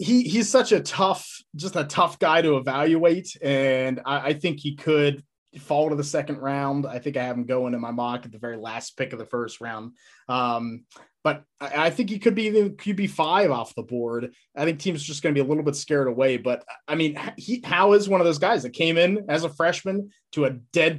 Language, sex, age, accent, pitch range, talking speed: English, male, 20-39, American, 125-170 Hz, 245 wpm